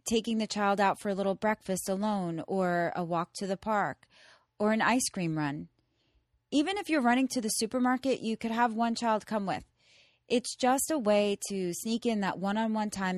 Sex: female